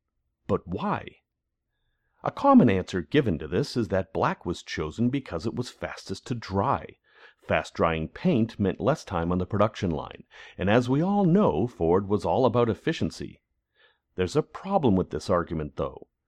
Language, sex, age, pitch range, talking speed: English, male, 40-59, 85-115 Hz, 170 wpm